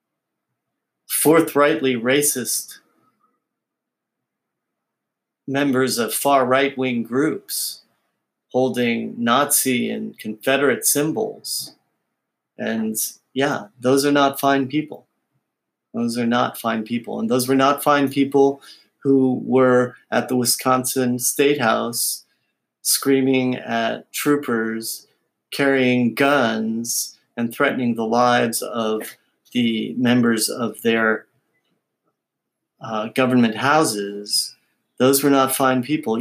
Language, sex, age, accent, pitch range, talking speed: English, male, 40-59, American, 120-145 Hz, 100 wpm